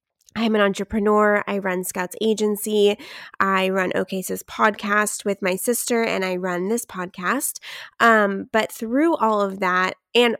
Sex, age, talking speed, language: female, 20-39, 150 wpm, English